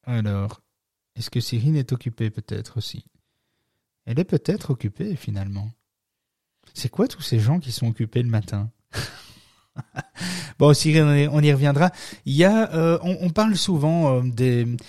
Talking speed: 155 wpm